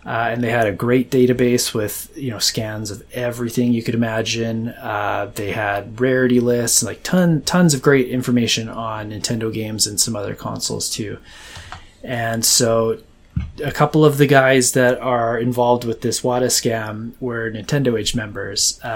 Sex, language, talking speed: male, English, 170 wpm